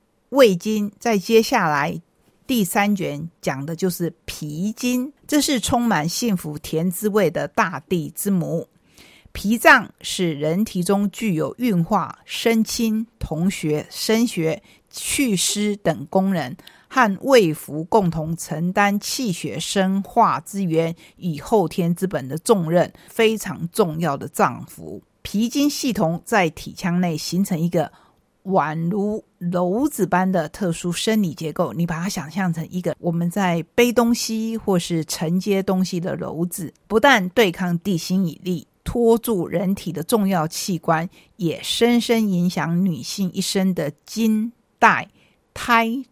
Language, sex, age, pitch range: Chinese, female, 50-69, 165-215 Hz